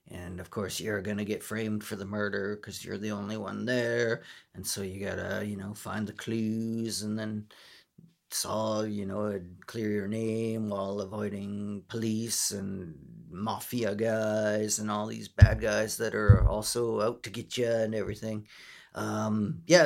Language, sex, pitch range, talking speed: English, male, 105-115 Hz, 170 wpm